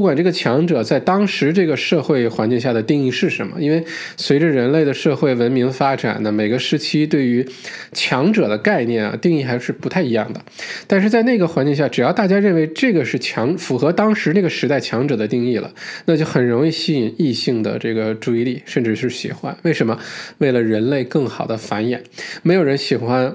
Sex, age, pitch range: male, 20-39, 120-160 Hz